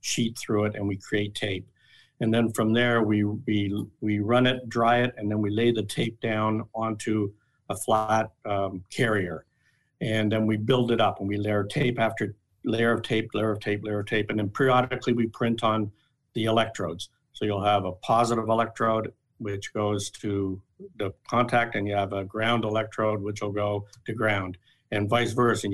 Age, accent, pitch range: 60-79, American, 100-120 Hz